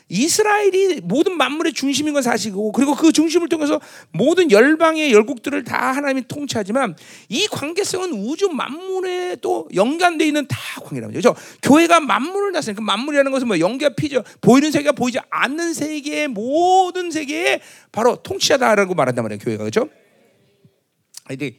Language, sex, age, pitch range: Korean, male, 40-59, 225-370 Hz